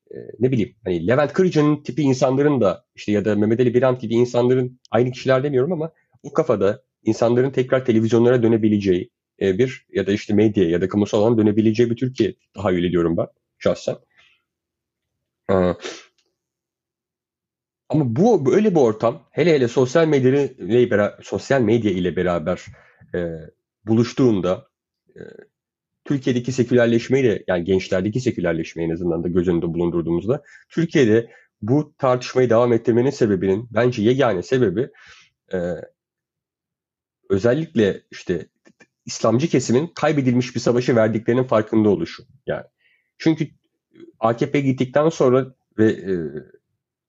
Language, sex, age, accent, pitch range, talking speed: Turkish, male, 30-49, native, 100-130 Hz, 120 wpm